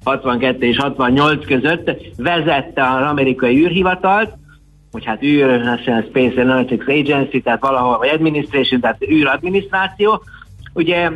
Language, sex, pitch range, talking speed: Hungarian, male, 130-170 Hz, 120 wpm